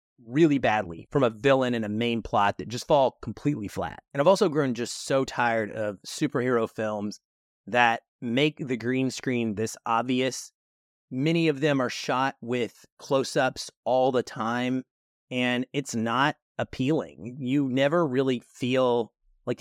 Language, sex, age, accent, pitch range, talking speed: English, male, 30-49, American, 120-160 Hz, 155 wpm